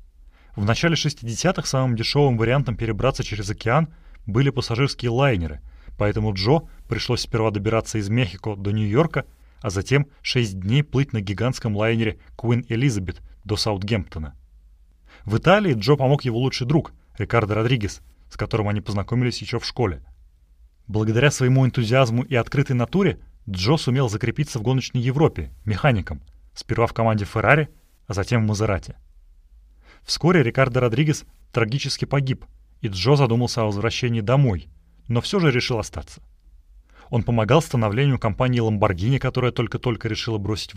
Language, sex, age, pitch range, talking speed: Russian, male, 30-49, 100-130 Hz, 140 wpm